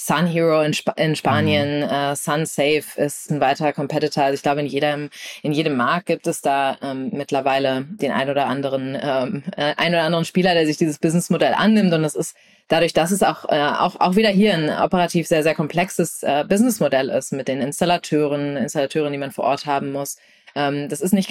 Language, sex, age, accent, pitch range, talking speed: German, female, 20-39, German, 140-170 Hz, 200 wpm